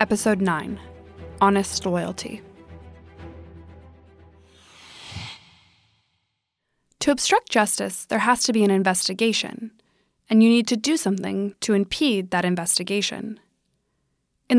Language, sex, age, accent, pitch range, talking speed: English, female, 20-39, American, 190-230 Hz, 100 wpm